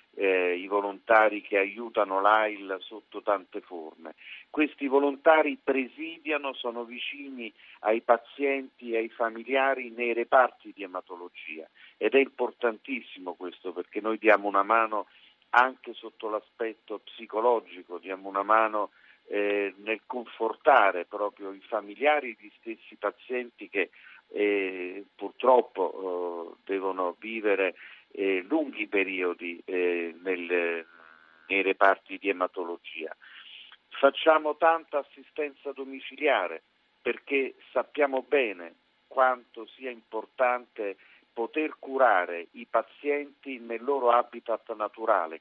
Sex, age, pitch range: male, 50-69, 95-135 Hz